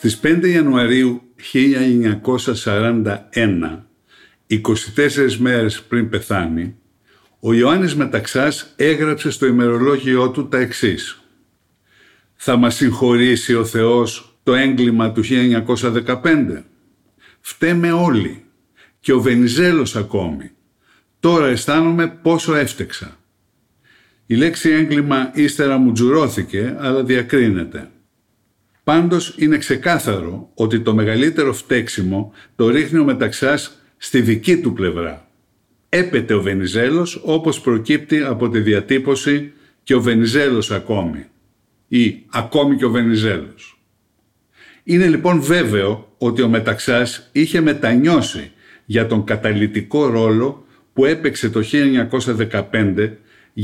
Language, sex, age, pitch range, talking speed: Greek, male, 60-79, 110-145 Hz, 105 wpm